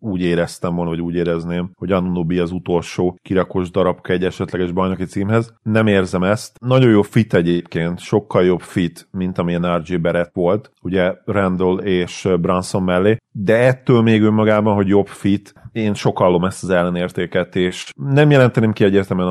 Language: Hungarian